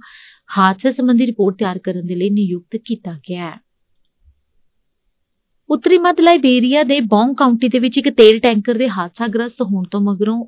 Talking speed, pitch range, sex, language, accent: 150 wpm, 185-235 Hz, female, English, Indian